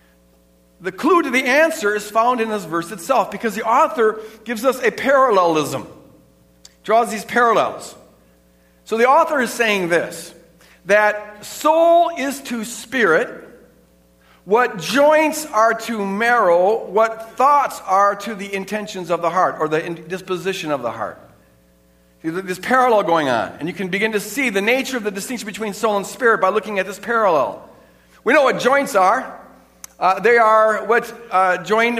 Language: English